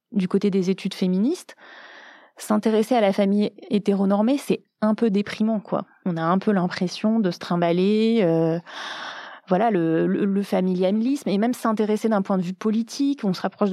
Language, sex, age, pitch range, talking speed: French, female, 20-39, 180-215 Hz, 175 wpm